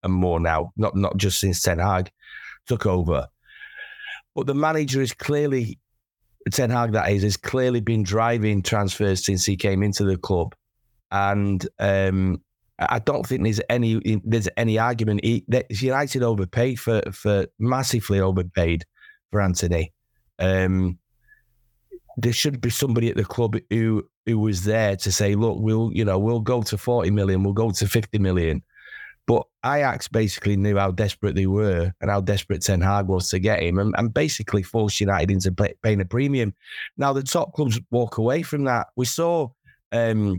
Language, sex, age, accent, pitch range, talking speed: English, male, 30-49, British, 100-120 Hz, 175 wpm